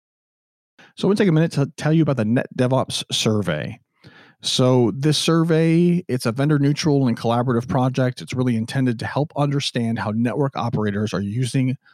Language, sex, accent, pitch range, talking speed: English, male, American, 115-145 Hz, 170 wpm